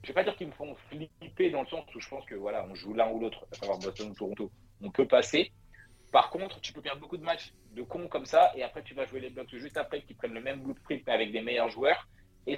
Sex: male